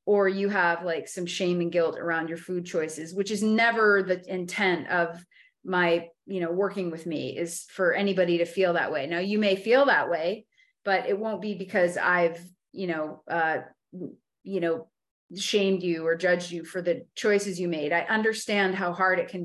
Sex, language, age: female, English, 30-49